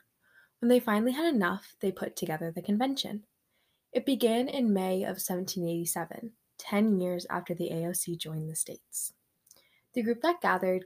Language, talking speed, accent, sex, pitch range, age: English, 155 wpm, American, female, 180-240 Hz, 10-29